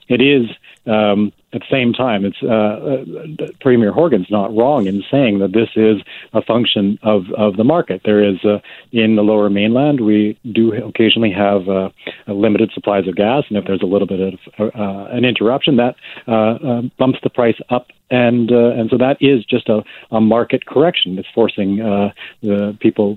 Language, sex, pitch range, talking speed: English, male, 100-115 Hz, 190 wpm